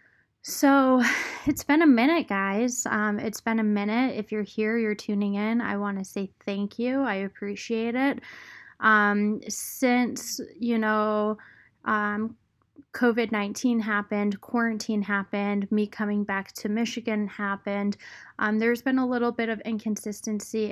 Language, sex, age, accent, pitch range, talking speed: English, female, 20-39, American, 205-240 Hz, 140 wpm